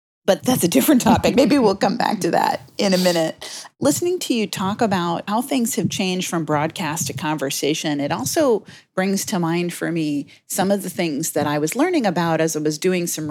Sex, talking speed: female, 215 wpm